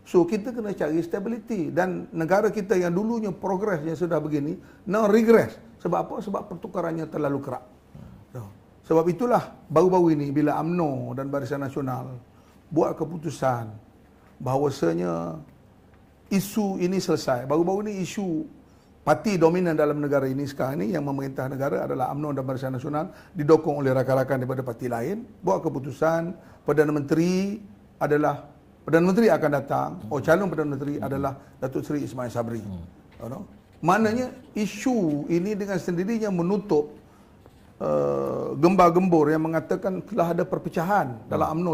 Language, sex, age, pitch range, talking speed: Malay, male, 40-59, 140-185 Hz, 135 wpm